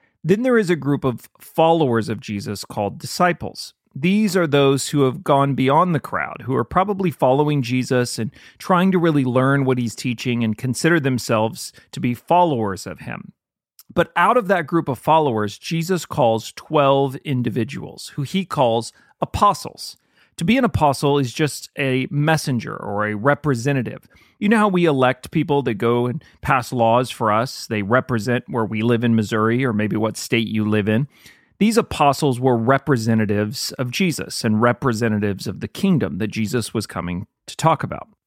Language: English